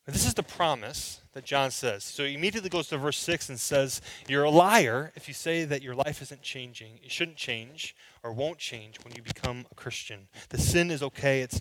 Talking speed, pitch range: 220 wpm, 115-155 Hz